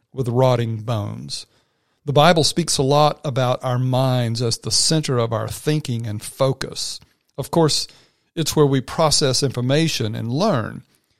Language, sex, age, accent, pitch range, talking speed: English, male, 50-69, American, 120-150 Hz, 150 wpm